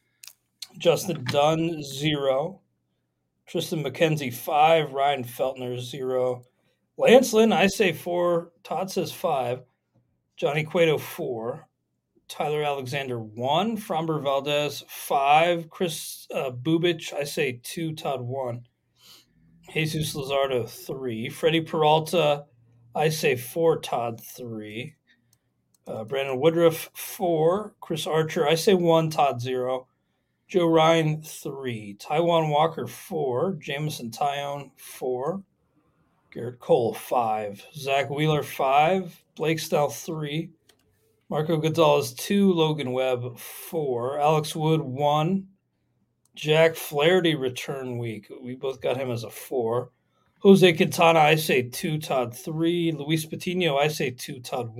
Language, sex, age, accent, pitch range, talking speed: English, male, 40-59, American, 125-165 Hz, 115 wpm